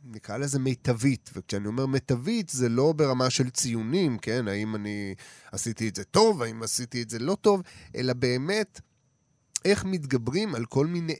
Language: Hebrew